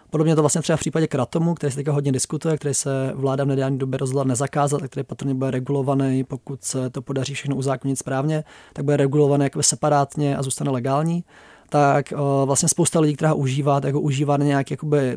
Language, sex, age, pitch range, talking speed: Czech, male, 20-39, 135-150 Hz, 200 wpm